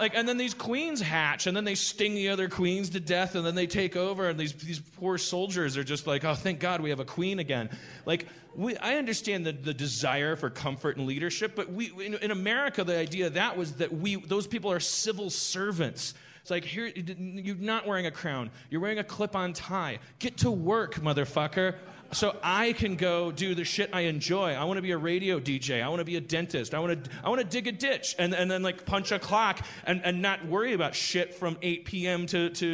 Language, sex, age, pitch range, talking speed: English, male, 30-49, 150-190 Hz, 240 wpm